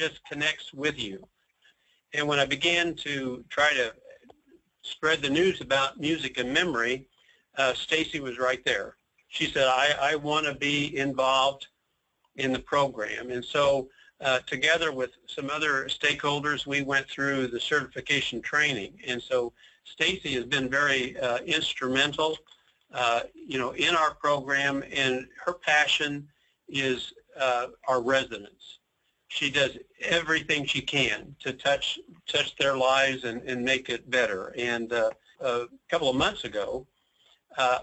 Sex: male